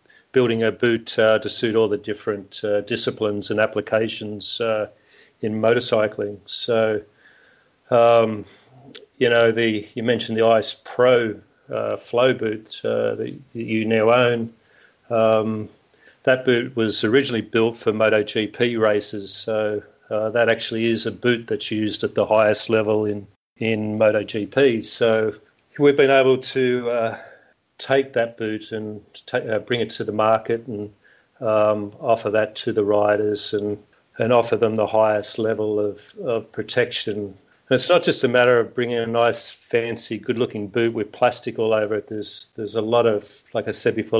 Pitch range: 105-120 Hz